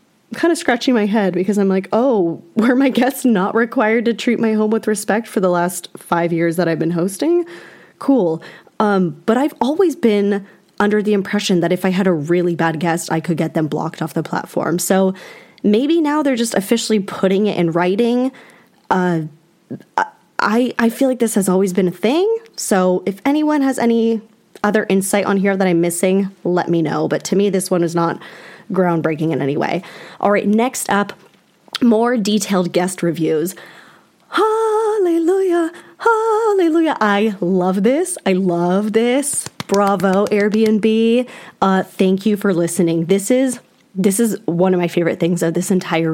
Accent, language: American, English